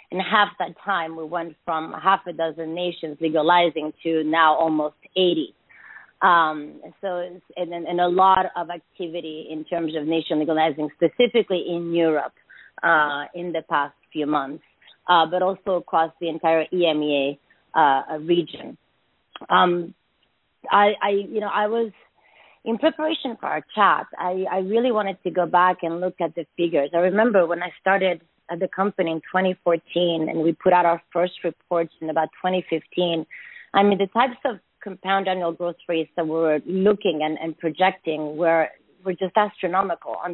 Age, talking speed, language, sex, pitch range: 30-49, 165 wpm, English, female, 160-190 Hz